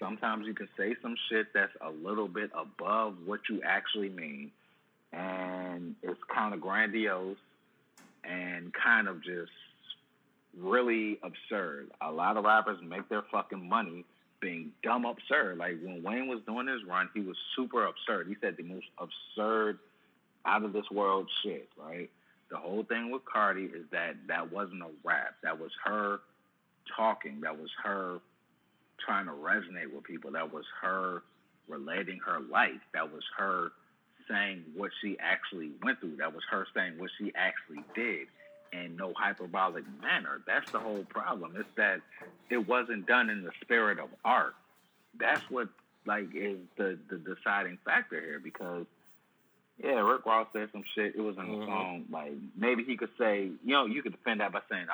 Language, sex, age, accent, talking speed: English, male, 30-49, American, 170 wpm